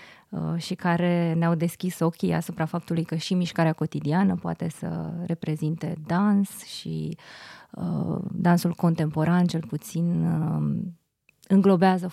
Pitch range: 165-195 Hz